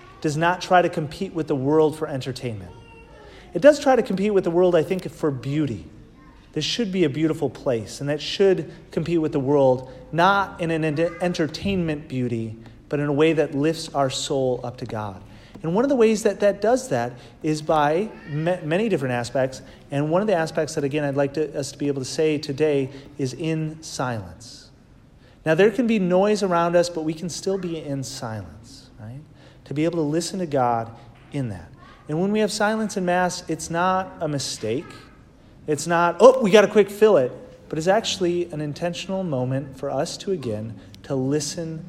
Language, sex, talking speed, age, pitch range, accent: English, male, 200 wpm, 40-59, 125-170 Hz, American